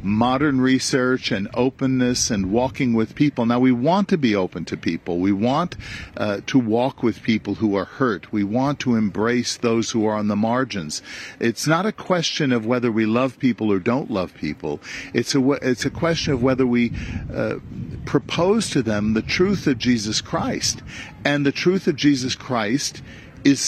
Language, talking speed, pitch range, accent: English, 180 wpm, 115-140 Hz, American